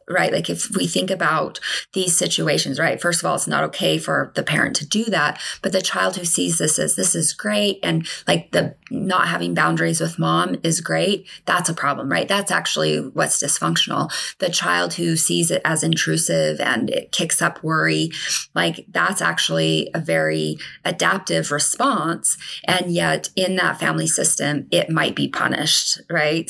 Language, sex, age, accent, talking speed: English, female, 20-39, American, 180 wpm